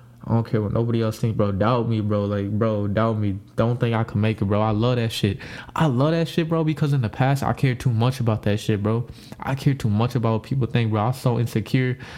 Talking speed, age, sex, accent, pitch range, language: 270 wpm, 20-39, male, American, 115-140 Hz, English